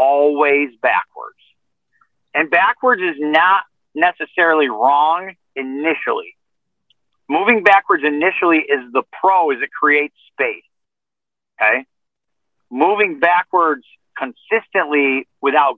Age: 50-69